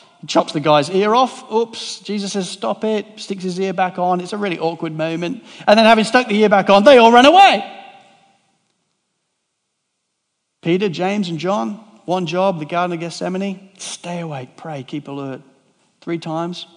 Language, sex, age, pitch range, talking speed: English, male, 50-69, 160-205 Hz, 175 wpm